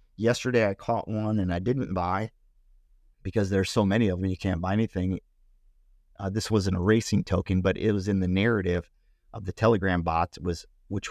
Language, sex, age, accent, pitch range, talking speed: English, male, 40-59, American, 85-105 Hz, 190 wpm